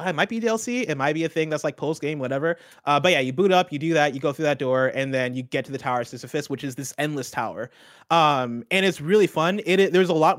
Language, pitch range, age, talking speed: English, 130-165 Hz, 20-39, 300 wpm